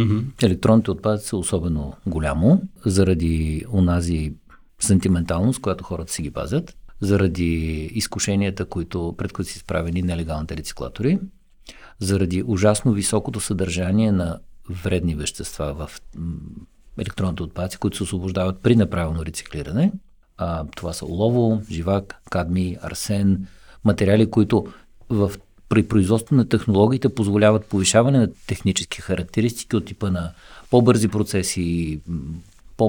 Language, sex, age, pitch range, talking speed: Bulgarian, male, 50-69, 90-110 Hz, 115 wpm